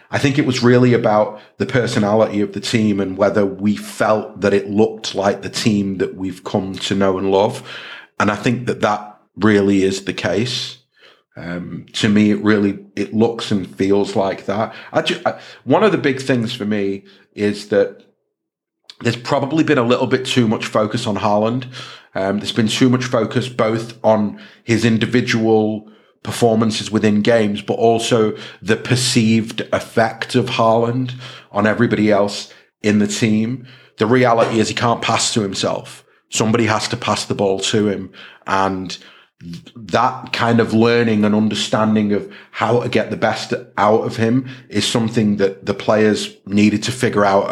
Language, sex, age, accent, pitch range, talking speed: English, male, 40-59, British, 105-120 Hz, 175 wpm